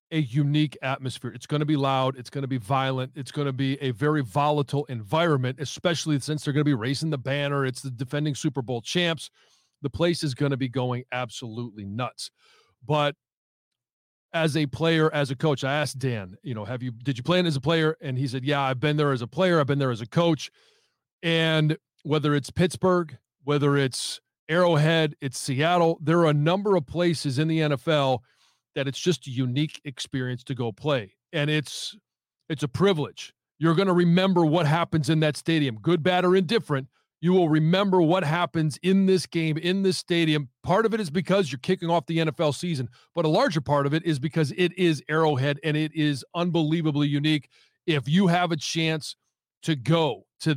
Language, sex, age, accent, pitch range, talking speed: English, male, 40-59, American, 135-165 Hz, 205 wpm